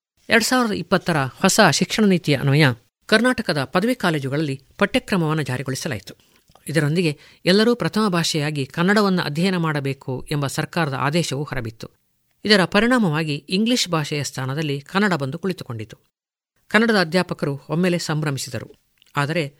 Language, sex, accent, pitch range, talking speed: Kannada, female, native, 140-185 Hz, 110 wpm